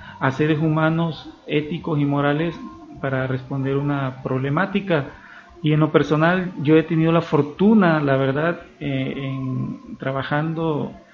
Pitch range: 140-170 Hz